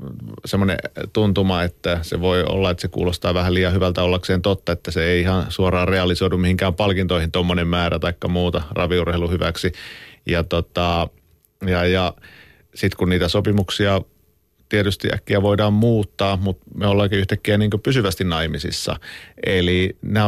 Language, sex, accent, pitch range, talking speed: Finnish, male, native, 90-105 Hz, 145 wpm